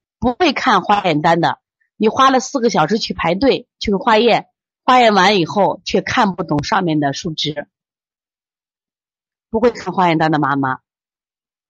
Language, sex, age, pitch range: Chinese, female, 30-49, 165-250 Hz